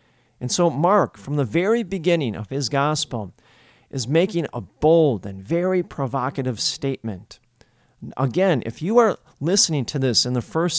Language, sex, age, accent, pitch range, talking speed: English, male, 40-59, American, 120-170 Hz, 155 wpm